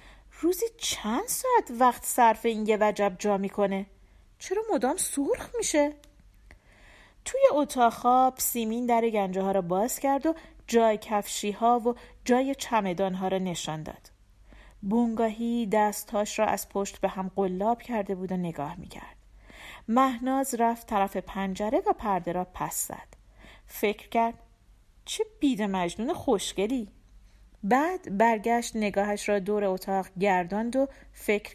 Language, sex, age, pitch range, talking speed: Persian, female, 40-59, 195-270 Hz, 135 wpm